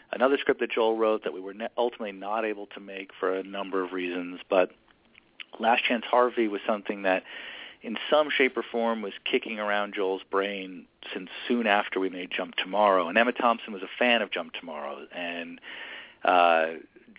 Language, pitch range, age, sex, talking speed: English, 90-110 Hz, 40-59, male, 190 wpm